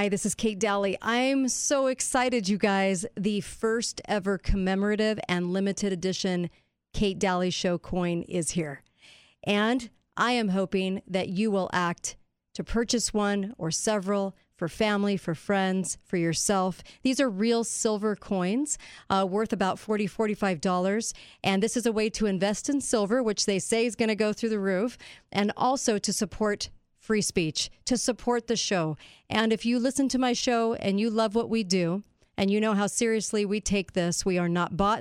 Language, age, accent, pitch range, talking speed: English, 40-59, American, 185-225 Hz, 180 wpm